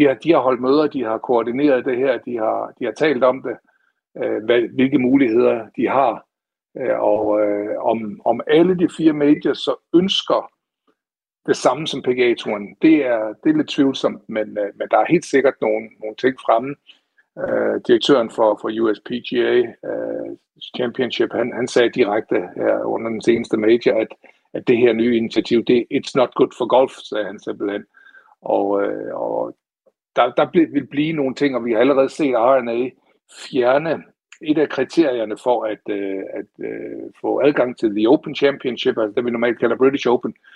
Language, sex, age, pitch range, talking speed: Danish, male, 60-79, 115-175 Hz, 170 wpm